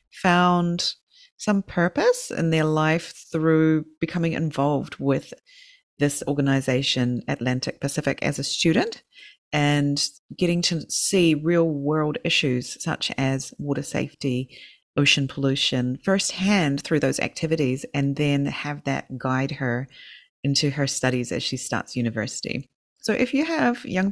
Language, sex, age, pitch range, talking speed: English, female, 30-49, 135-175 Hz, 130 wpm